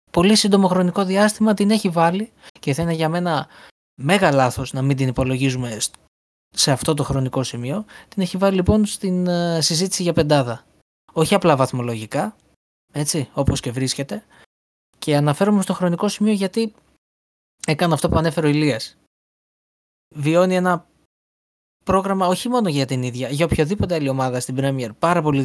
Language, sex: Greek, male